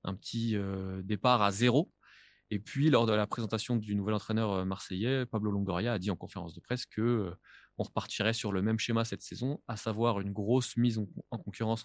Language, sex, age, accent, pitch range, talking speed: French, male, 20-39, French, 105-125 Hz, 210 wpm